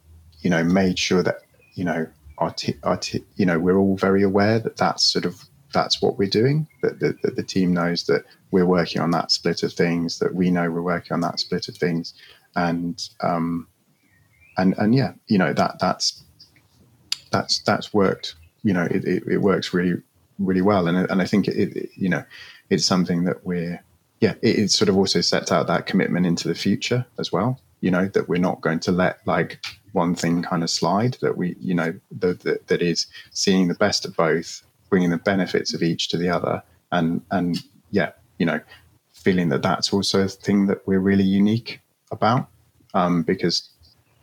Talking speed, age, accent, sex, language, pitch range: 205 wpm, 30-49, British, male, English, 85-100 Hz